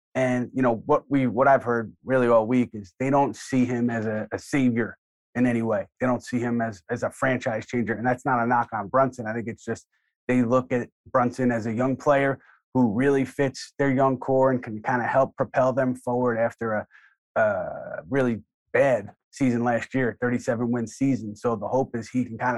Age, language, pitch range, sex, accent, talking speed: 30-49, English, 115-130 Hz, male, American, 220 wpm